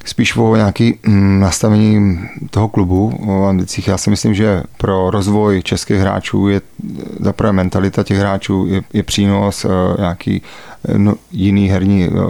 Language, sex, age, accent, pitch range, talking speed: Czech, male, 30-49, native, 95-105 Hz, 140 wpm